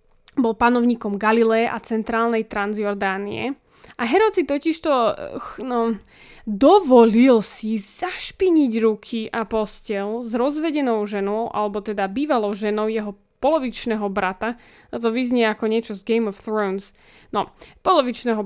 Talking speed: 120 wpm